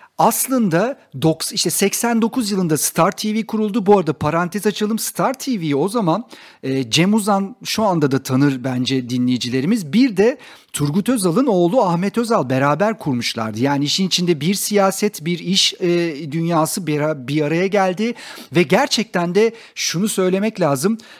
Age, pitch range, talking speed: 50-69, 150-220 Hz, 140 wpm